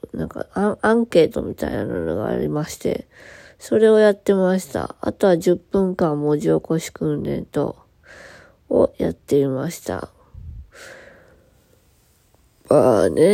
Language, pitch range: Japanese, 150-225 Hz